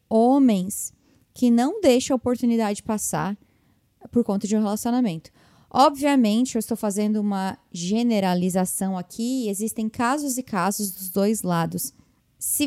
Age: 20-39